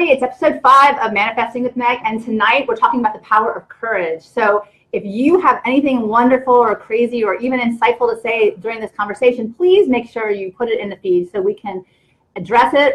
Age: 30-49